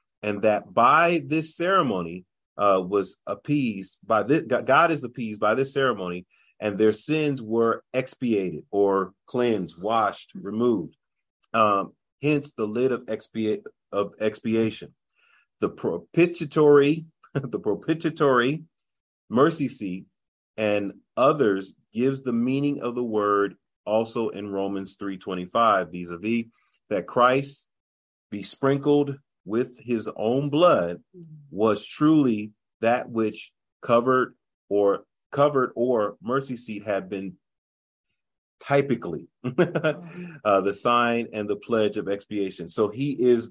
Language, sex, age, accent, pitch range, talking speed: English, male, 30-49, American, 105-135 Hz, 115 wpm